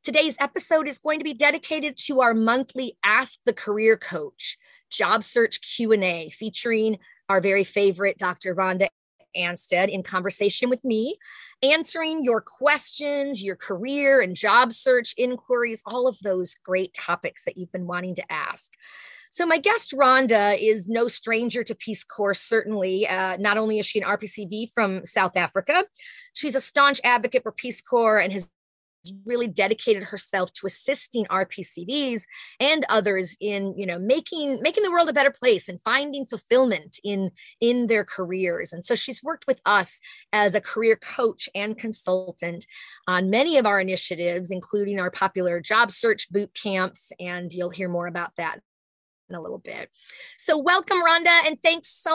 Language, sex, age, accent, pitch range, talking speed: English, female, 30-49, American, 195-275 Hz, 165 wpm